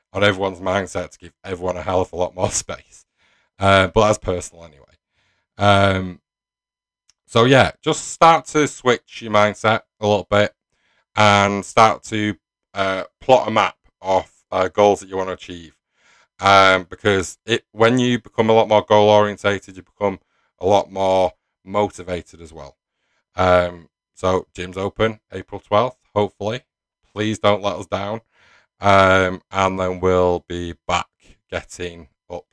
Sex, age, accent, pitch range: male, 30-49, British, 90-105 Hz